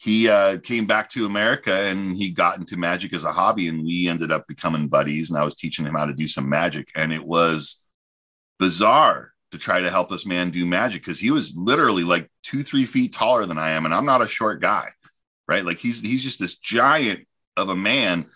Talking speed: 230 wpm